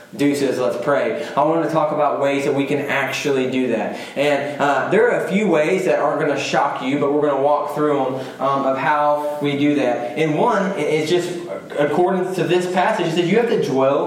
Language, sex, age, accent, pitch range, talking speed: English, male, 20-39, American, 140-160 Hz, 235 wpm